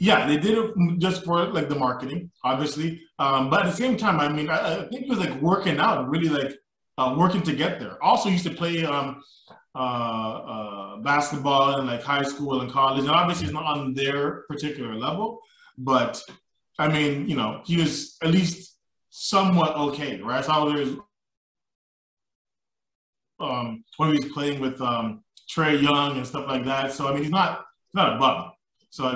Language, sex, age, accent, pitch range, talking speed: English, male, 20-39, American, 135-175 Hz, 200 wpm